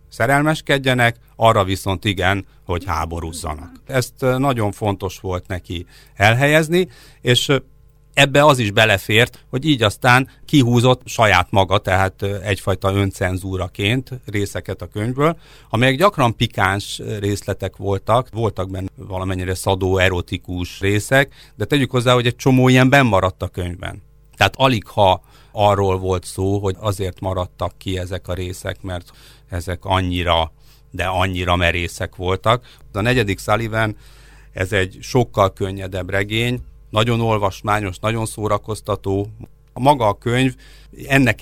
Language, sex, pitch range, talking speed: Hungarian, male, 95-125 Hz, 125 wpm